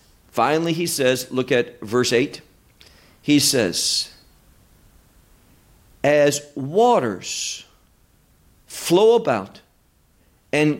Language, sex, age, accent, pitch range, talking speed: English, male, 50-69, American, 130-170 Hz, 80 wpm